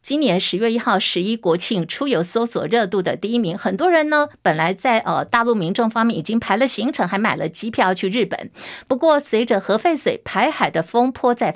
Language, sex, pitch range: Chinese, female, 195-270 Hz